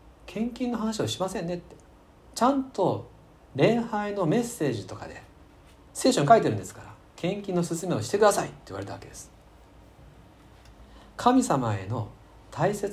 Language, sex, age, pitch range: Japanese, male, 40-59, 110-175 Hz